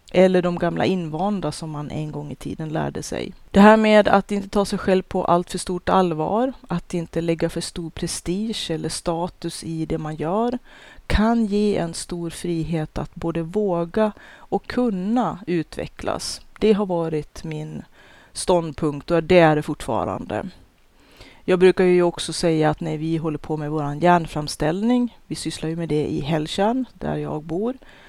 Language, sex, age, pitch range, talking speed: Swedish, female, 30-49, 155-185 Hz, 175 wpm